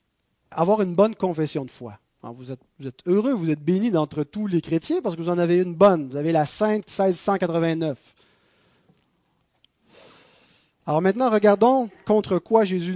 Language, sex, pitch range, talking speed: French, male, 150-195 Hz, 170 wpm